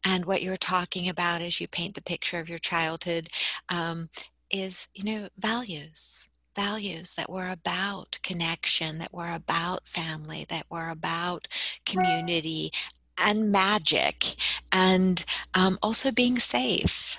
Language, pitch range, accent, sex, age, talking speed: English, 165-200 Hz, American, female, 40-59, 130 wpm